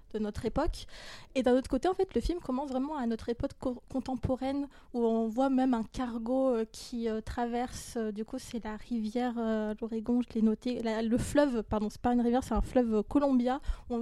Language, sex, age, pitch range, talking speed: French, female, 20-39, 230-270 Hz, 200 wpm